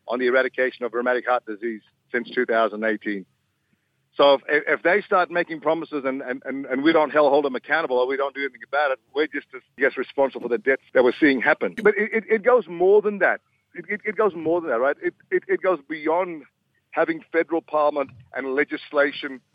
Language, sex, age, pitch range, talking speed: English, male, 50-69, 140-210 Hz, 220 wpm